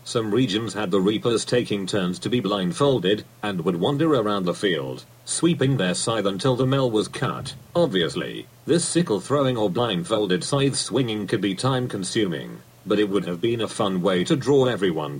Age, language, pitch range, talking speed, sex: 40-59, English, 105-135 Hz, 185 wpm, male